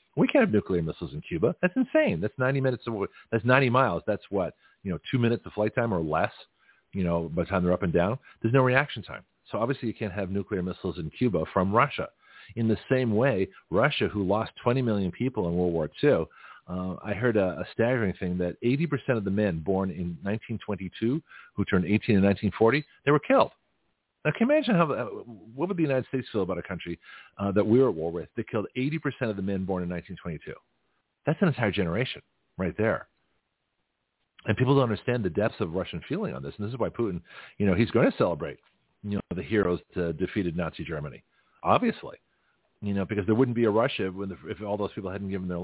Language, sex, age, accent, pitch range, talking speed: English, male, 40-59, American, 95-125 Hz, 225 wpm